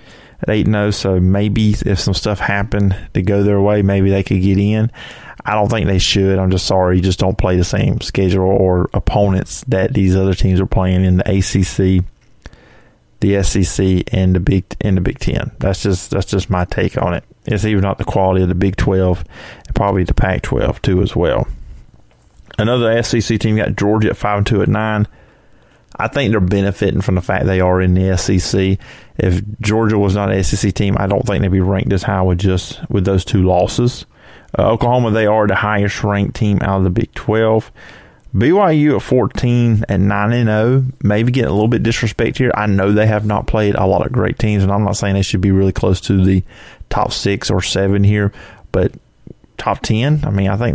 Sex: male